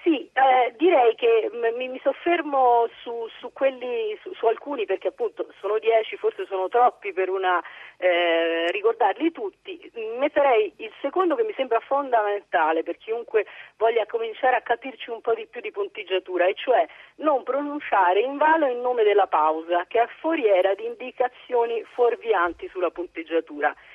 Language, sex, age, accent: Italian, female, 40-59, native